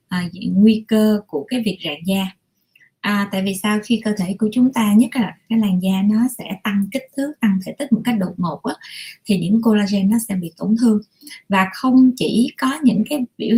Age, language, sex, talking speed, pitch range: 20-39, Vietnamese, female, 210 wpm, 195-235 Hz